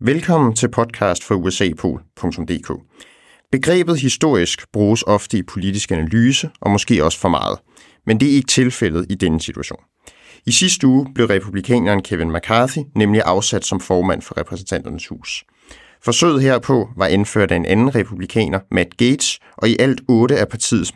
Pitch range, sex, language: 95-125 Hz, male, English